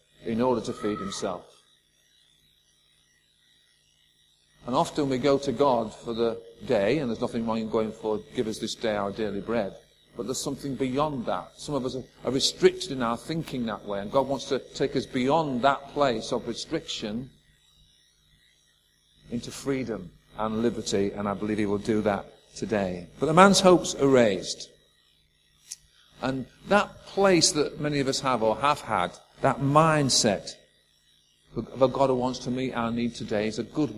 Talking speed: 175 wpm